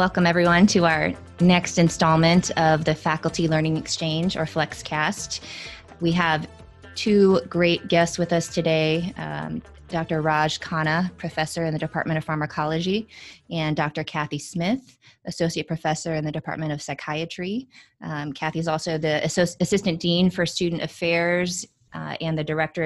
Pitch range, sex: 150-170 Hz, female